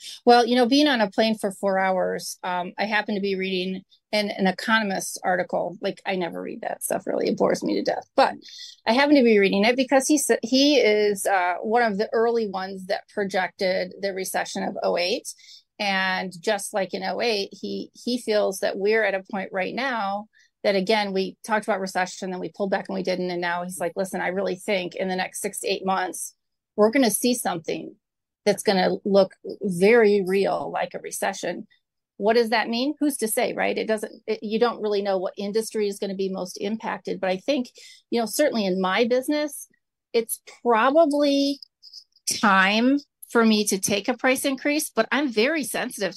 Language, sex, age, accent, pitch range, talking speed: English, female, 30-49, American, 190-240 Hz, 205 wpm